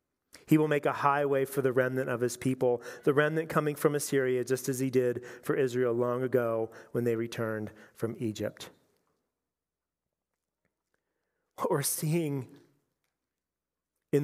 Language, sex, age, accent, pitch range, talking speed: English, male, 40-59, American, 120-155 Hz, 140 wpm